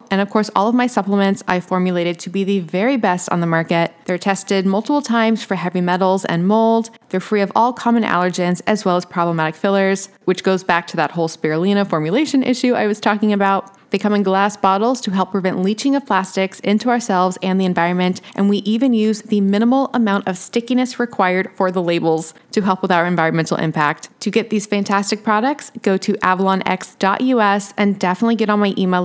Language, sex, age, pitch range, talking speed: English, female, 20-39, 185-230 Hz, 205 wpm